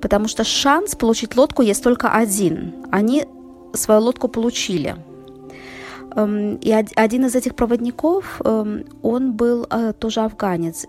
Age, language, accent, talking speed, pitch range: 20-39, Russian, native, 115 wpm, 205-235 Hz